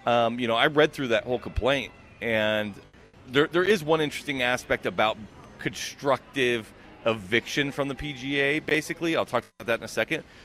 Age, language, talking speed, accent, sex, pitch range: 40-59, English, 170 wpm, American, male, 120-175 Hz